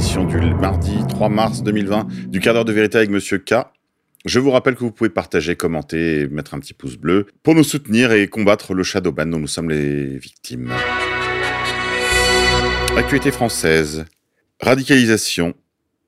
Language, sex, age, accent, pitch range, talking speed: French, male, 40-59, French, 85-110 Hz, 155 wpm